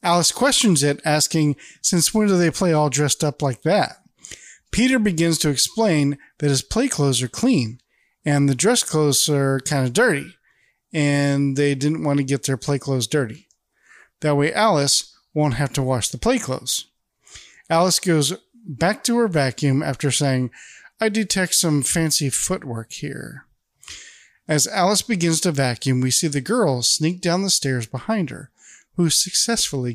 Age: 40-59